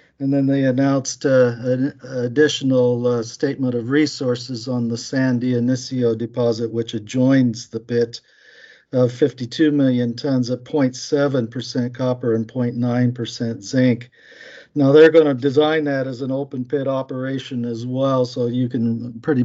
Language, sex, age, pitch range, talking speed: English, male, 50-69, 115-130 Hz, 145 wpm